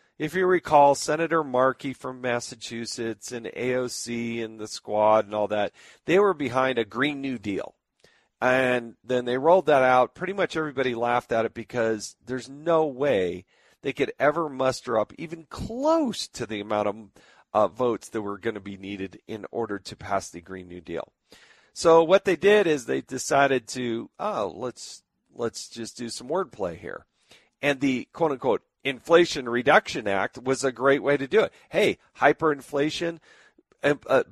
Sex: male